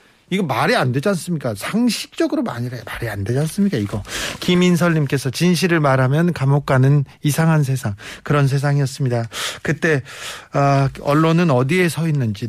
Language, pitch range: Korean, 130-175 Hz